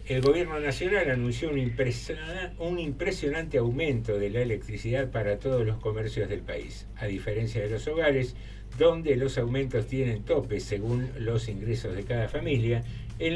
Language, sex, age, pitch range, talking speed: Spanish, male, 60-79, 110-140 Hz, 155 wpm